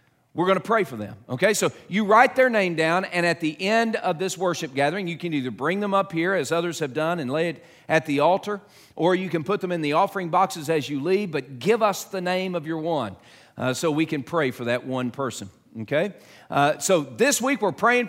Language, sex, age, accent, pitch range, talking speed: English, male, 40-59, American, 140-195 Hz, 245 wpm